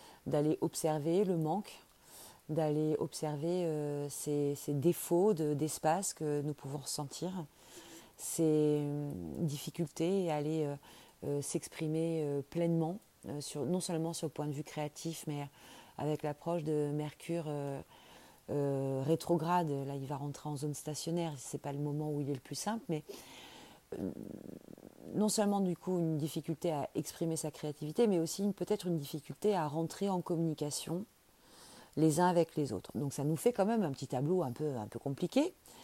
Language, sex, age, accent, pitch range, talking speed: French, female, 30-49, French, 145-175 Hz, 160 wpm